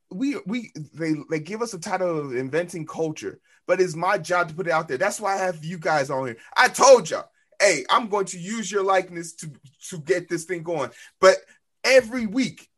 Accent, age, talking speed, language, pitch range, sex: American, 20-39, 220 wpm, English, 165-220 Hz, male